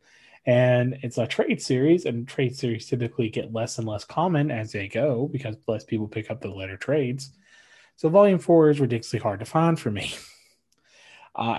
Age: 20-39